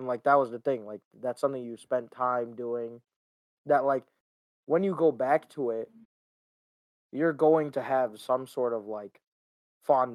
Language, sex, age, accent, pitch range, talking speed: English, male, 20-39, American, 120-140 Hz, 170 wpm